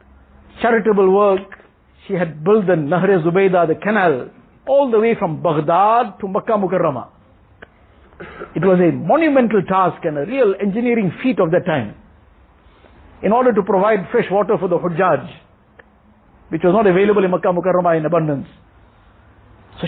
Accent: Indian